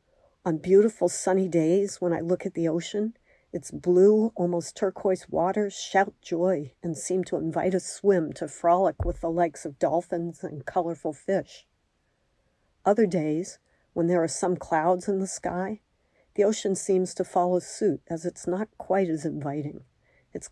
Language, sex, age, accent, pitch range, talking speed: English, female, 50-69, American, 160-190 Hz, 165 wpm